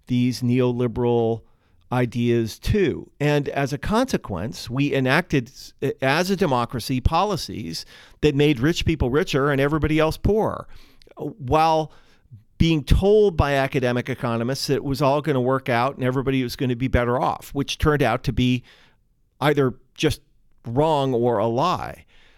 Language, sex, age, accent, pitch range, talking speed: English, male, 40-59, American, 120-145 Hz, 150 wpm